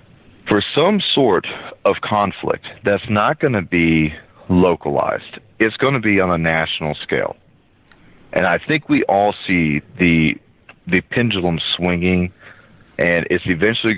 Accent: American